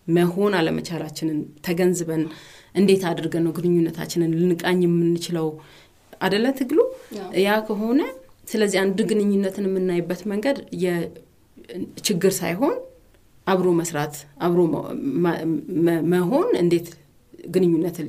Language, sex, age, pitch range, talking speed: English, female, 30-49, 165-195 Hz, 120 wpm